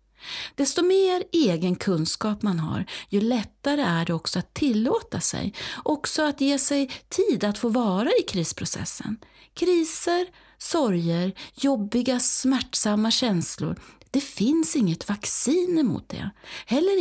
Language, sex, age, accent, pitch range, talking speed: Swedish, female, 40-59, native, 185-310 Hz, 125 wpm